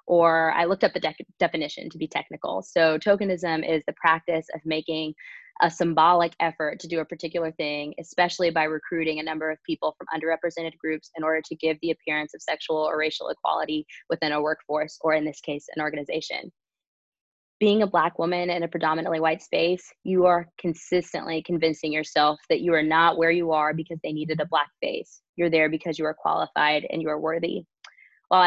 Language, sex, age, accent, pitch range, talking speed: English, female, 20-39, American, 155-175 Hz, 195 wpm